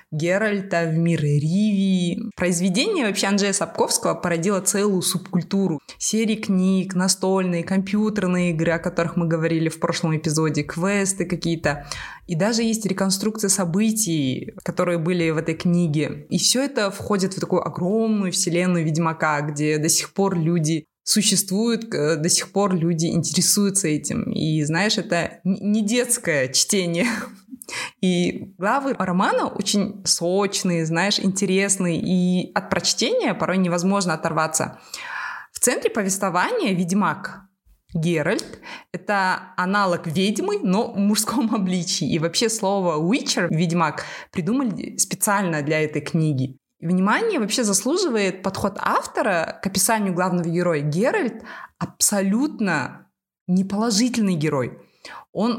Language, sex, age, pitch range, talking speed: Russian, female, 20-39, 170-205 Hz, 120 wpm